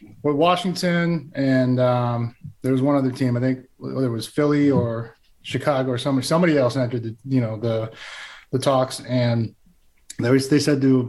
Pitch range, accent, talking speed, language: 125-160 Hz, American, 180 wpm, English